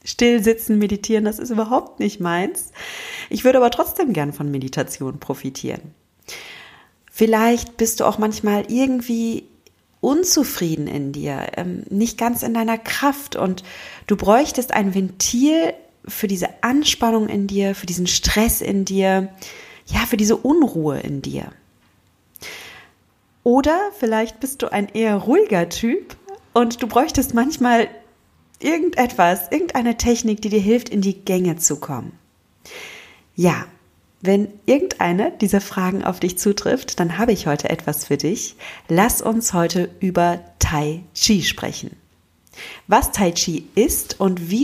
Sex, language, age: female, German, 40-59